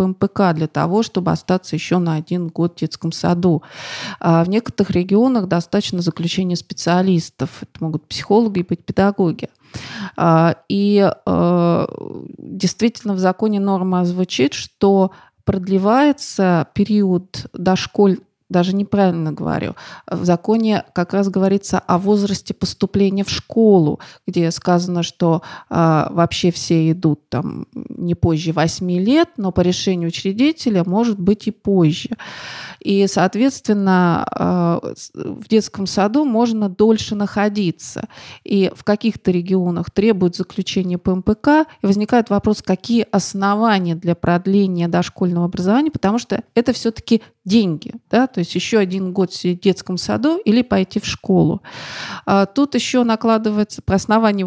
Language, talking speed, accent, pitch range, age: Russian, 125 wpm, native, 175-215 Hz, 30-49